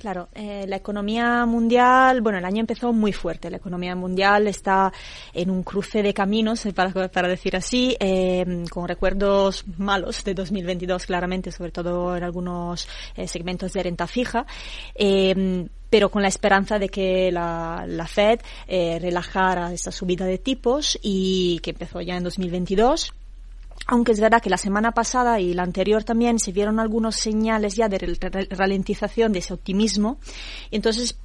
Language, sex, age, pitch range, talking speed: Spanish, female, 20-39, 180-210 Hz, 160 wpm